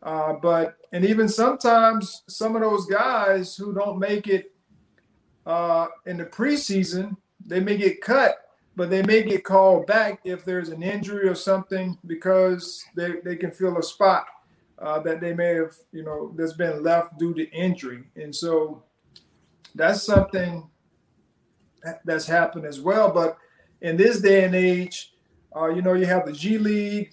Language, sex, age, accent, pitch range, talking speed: English, male, 50-69, American, 160-195 Hz, 170 wpm